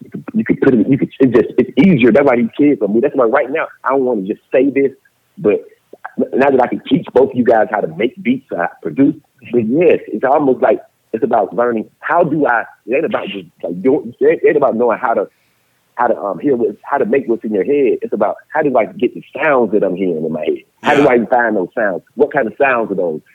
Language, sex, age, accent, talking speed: English, male, 40-59, American, 265 wpm